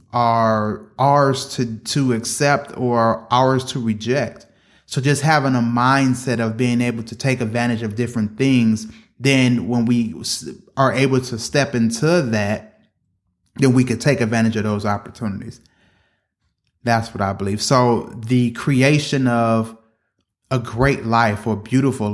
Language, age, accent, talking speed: English, 20-39, American, 145 wpm